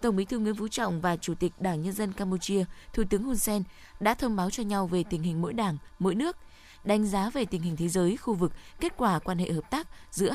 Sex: female